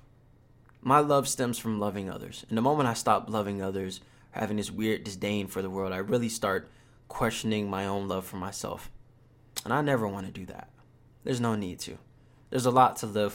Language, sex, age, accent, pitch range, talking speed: English, male, 20-39, American, 100-125 Hz, 200 wpm